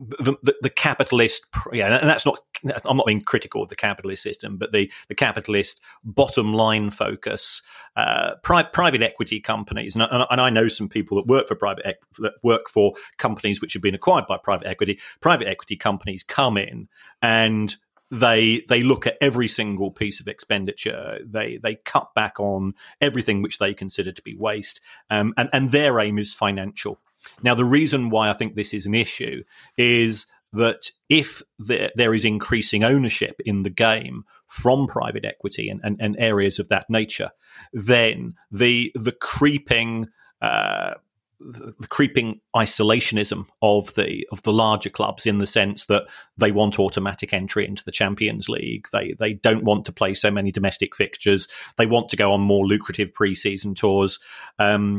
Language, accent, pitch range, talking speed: English, British, 100-120 Hz, 175 wpm